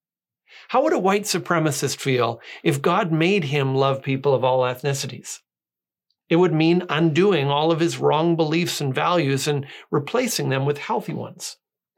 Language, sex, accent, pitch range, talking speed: English, male, American, 135-180 Hz, 160 wpm